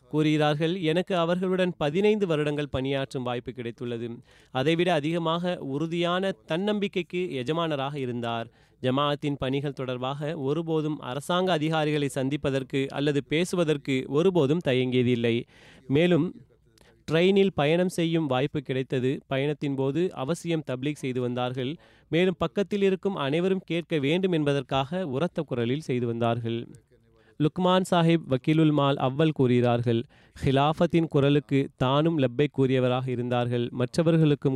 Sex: male